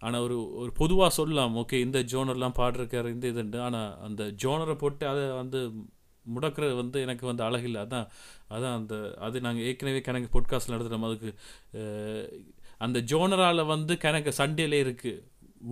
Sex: male